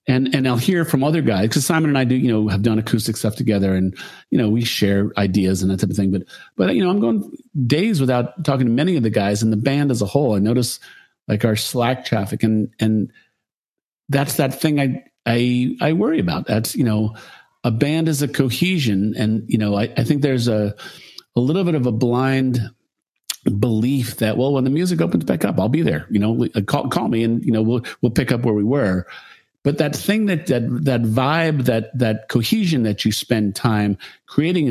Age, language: 50-69, English